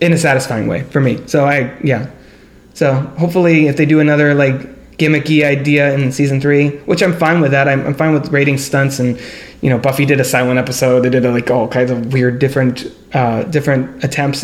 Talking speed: 215 wpm